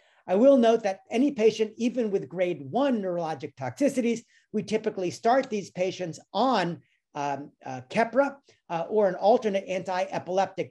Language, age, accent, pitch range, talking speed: English, 50-69, American, 165-230 Hz, 145 wpm